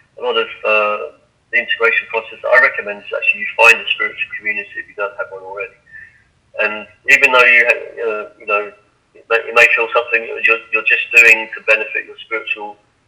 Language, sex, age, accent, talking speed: English, male, 40-59, British, 200 wpm